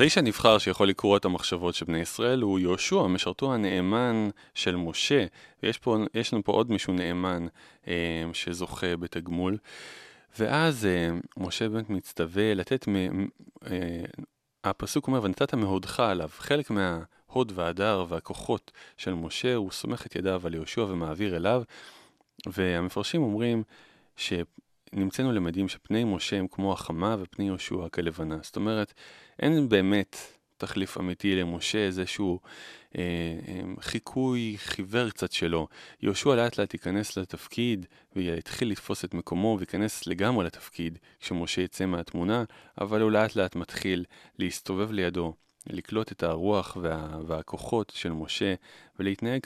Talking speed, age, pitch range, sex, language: 130 wpm, 30-49, 85-110 Hz, male, Hebrew